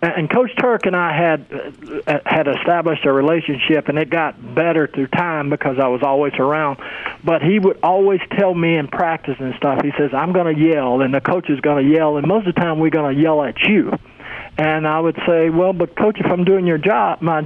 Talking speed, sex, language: 235 wpm, male, English